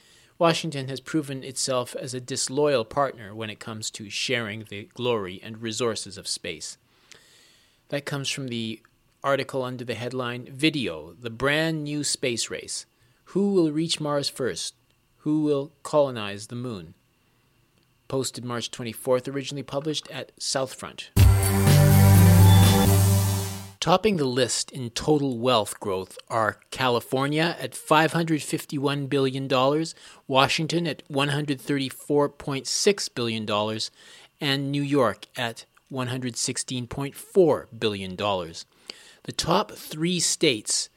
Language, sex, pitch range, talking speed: English, male, 120-150 Hz, 110 wpm